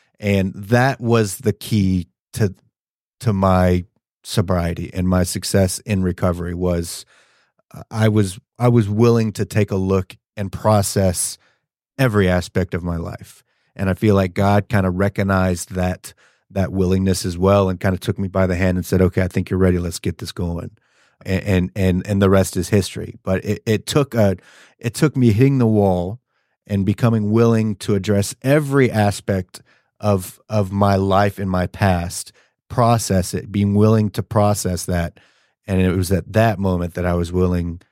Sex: male